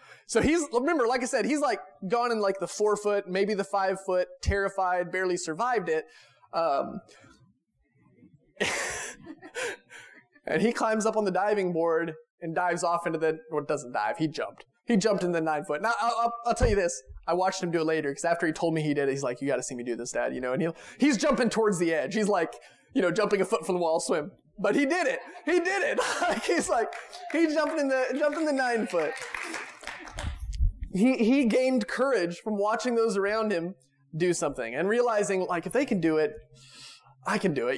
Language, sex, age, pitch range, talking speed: English, male, 20-39, 155-225 Hz, 210 wpm